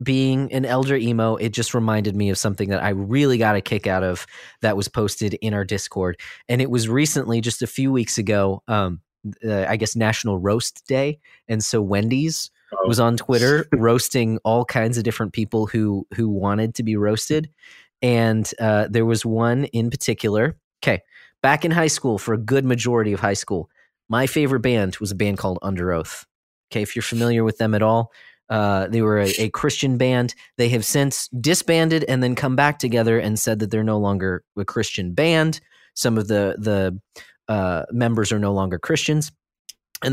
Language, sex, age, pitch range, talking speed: English, male, 30-49, 105-125 Hz, 195 wpm